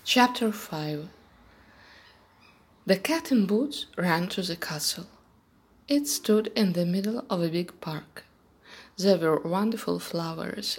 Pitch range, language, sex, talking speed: 170-230 Hz, English, female, 130 wpm